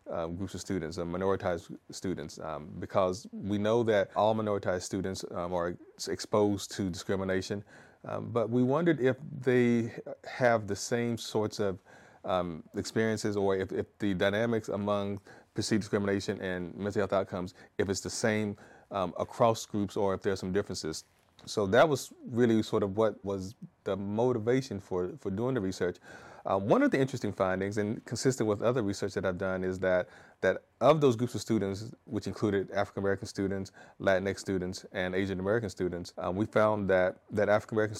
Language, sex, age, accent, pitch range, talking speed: English, male, 30-49, American, 95-110 Hz, 175 wpm